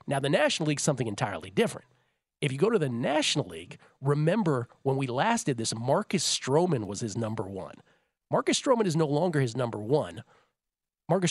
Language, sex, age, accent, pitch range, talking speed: English, male, 40-59, American, 120-165 Hz, 185 wpm